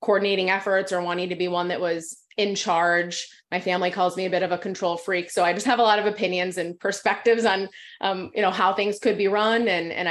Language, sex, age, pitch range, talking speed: English, female, 20-39, 180-215 Hz, 250 wpm